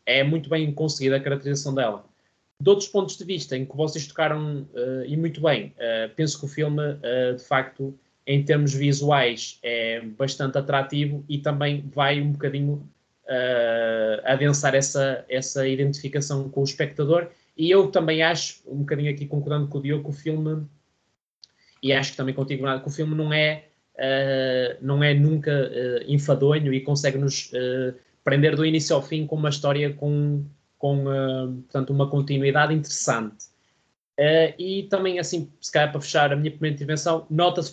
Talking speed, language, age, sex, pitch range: 175 wpm, Portuguese, 20-39, male, 130-150 Hz